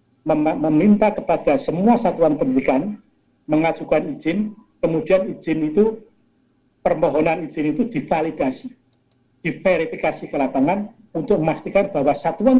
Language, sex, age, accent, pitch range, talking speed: Indonesian, male, 50-69, native, 140-195 Hz, 100 wpm